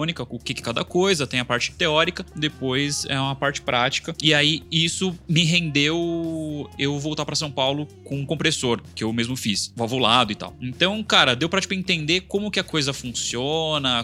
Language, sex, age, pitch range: Portuguese, male, 20-39, 115-155 Hz